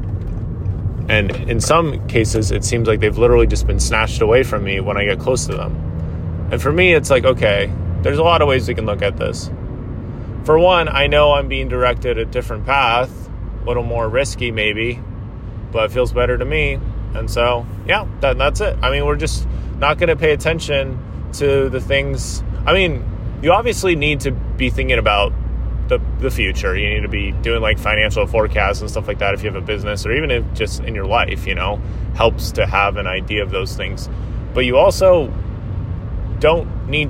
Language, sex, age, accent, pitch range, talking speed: English, male, 30-49, American, 100-120 Hz, 200 wpm